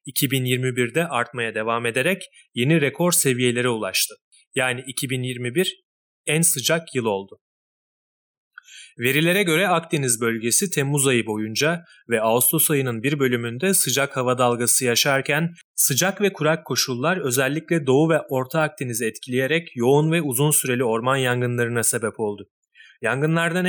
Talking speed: 125 wpm